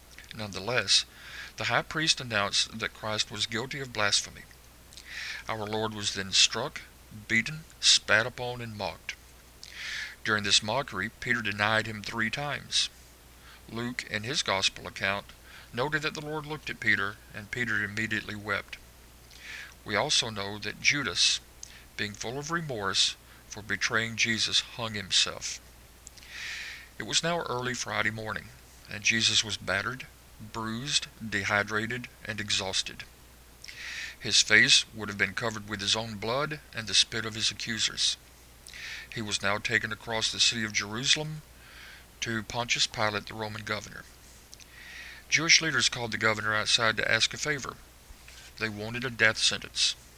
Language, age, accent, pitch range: English, 50-69, American, 80-115 Hz